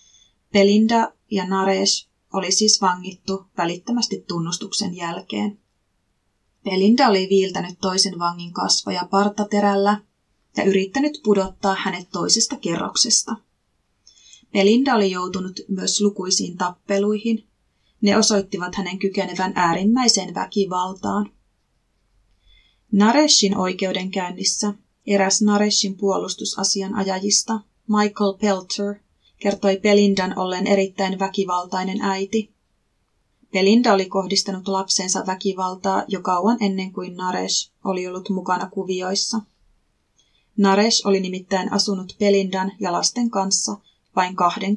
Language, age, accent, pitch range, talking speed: Finnish, 30-49, native, 185-205 Hz, 95 wpm